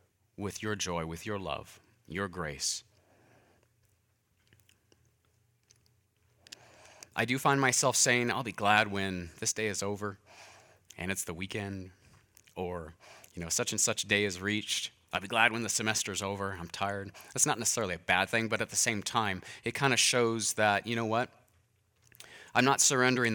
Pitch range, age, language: 95-115 Hz, 30-49, English